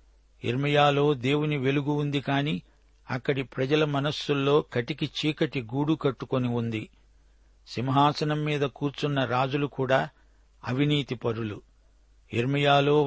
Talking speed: 95 wpm